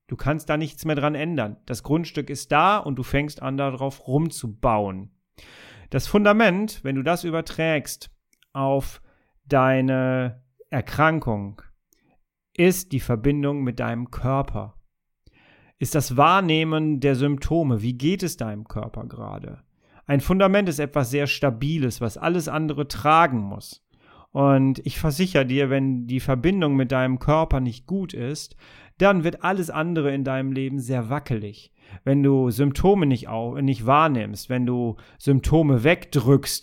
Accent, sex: German, male